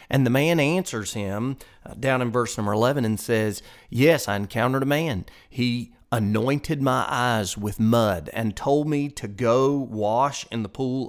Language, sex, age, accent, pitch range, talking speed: English, male, 30-49, American, 110-140 Hz, 180 wpm